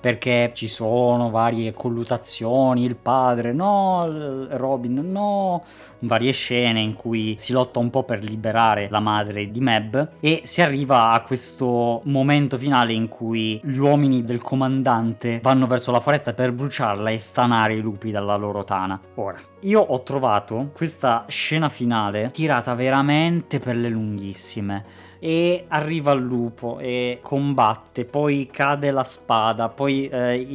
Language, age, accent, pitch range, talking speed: Italian, 20-39, native, 115-155 Hz, 145 wpm